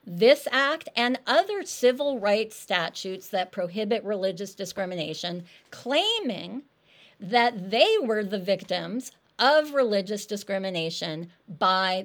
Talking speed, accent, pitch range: 105 wpm, American, 190-270 Hz